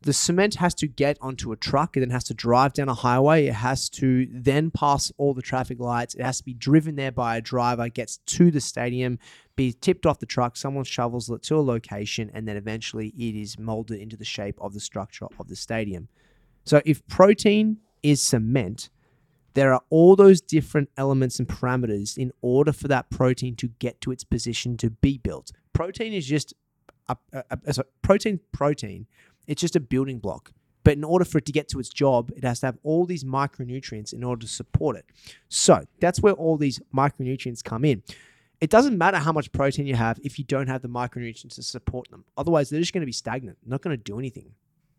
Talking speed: 215 wpm